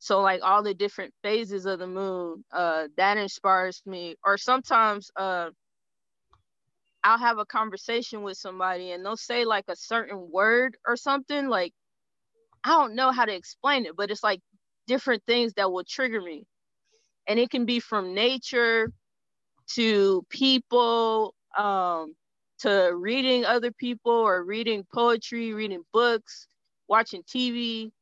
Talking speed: 145 wpm